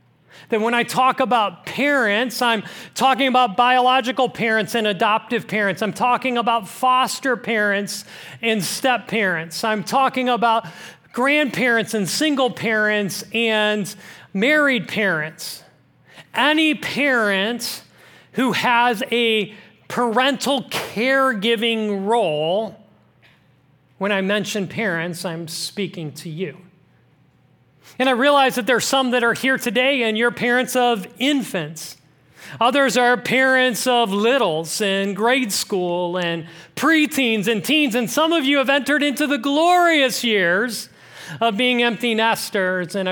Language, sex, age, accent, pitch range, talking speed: English, male, 40-59, American, 170-245 Hz, 125 wpm